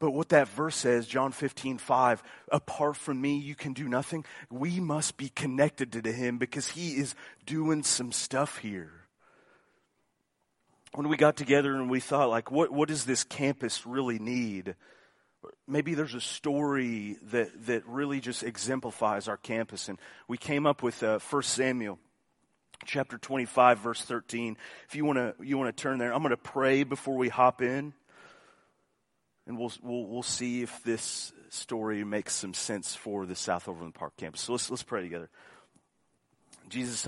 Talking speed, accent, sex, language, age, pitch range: 170 wpm, American, male, English, 30-49, 110-135 Hz